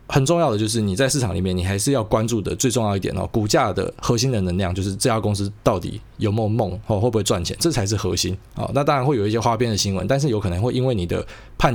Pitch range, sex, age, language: 100-130 Hz, male, 20-39, Chinese